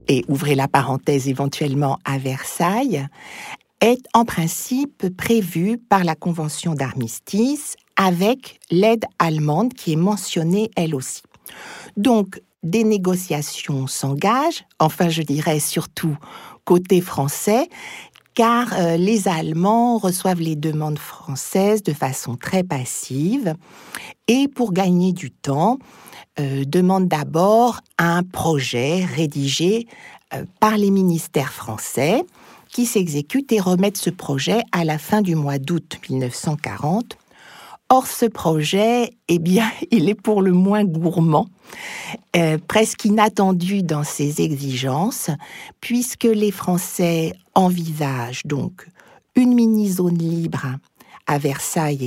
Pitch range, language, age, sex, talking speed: 150-215 Hz, French, 50-69, female, 115 wpm